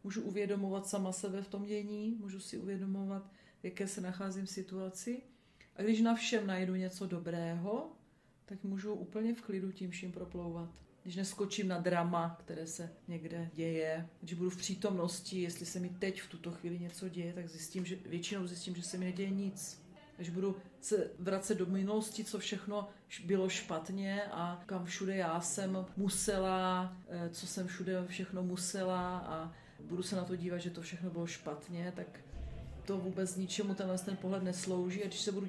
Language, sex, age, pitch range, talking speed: Czech, female, 40-59, 180-200 Hz, 180 wpm